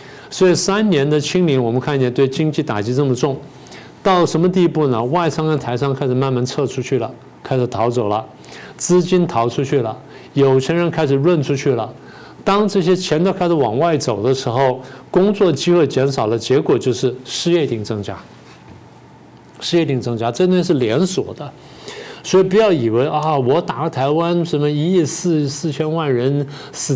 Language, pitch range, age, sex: Chinese, 130-165 Hz, 50-69, male